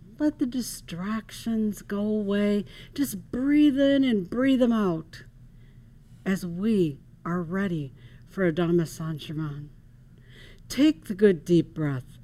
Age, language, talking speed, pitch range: 60-79, English, 120 wpm, 125-195 Hz